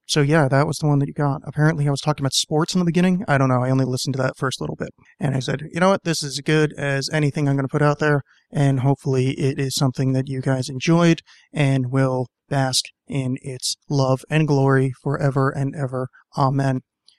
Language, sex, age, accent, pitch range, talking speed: English, male, 30-49, American, 135-155 Hz, 235 wpm